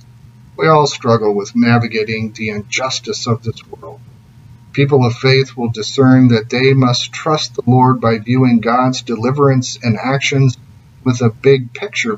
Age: 40-59